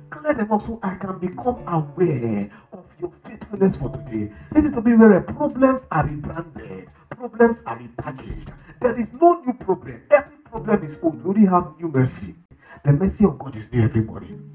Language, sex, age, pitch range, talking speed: English, male, 50-69, 155-235 Hz, 180 wpm